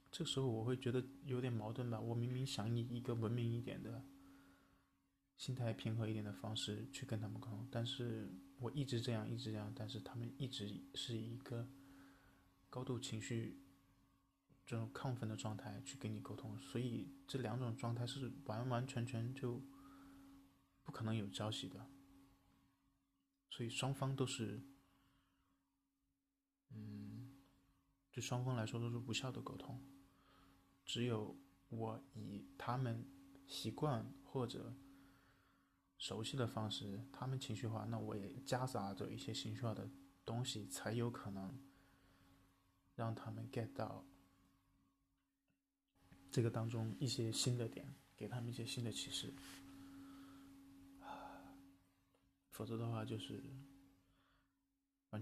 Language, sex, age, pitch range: Chinese, male, 20-39, 100-135 Hz